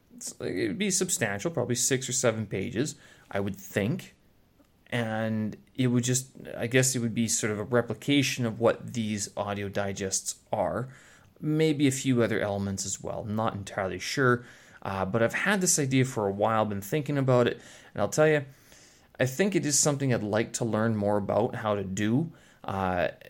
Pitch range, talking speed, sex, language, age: 100-125 Hz, 190 wpm, male, English, 30-49